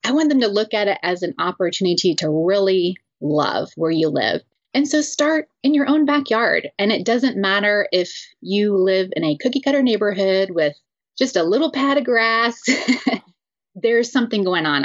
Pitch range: 165-240 Hz